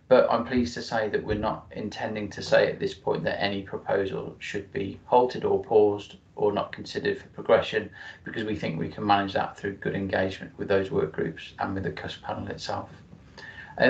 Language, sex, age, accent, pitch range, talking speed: English, male, 30-49, British, 100-125 Hz, 205 wpm